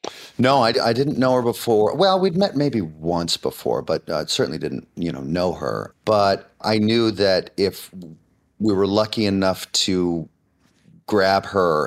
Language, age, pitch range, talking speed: English, 40-59, 80-100 Hz, 165 wpm